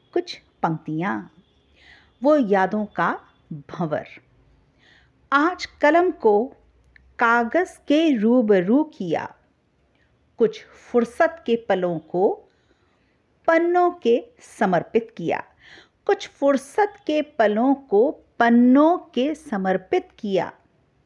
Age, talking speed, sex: 50-69, 90 wpm, female